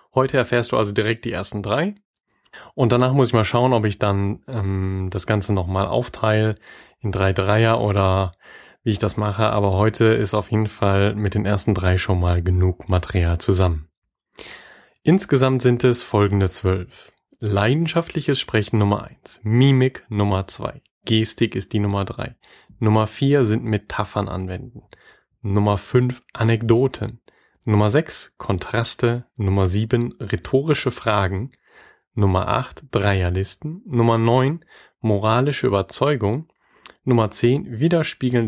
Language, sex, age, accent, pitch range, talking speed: German, male, 30-49, German, 100-125 Hz, 135 wpm